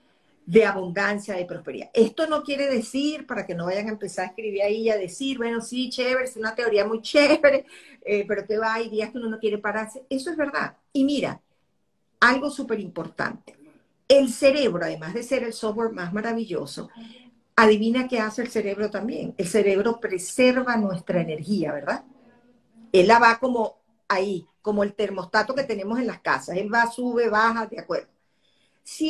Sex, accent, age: female, American, 50-69